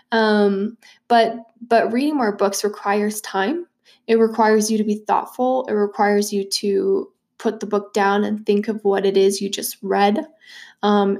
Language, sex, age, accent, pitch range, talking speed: English, female, 20-39, American, 205-235 Hz, 170 wpm